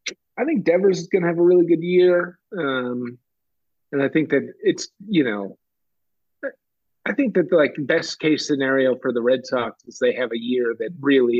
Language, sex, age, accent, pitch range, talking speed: English, male, 40-59, American, 130-175 Hz, 200 wpm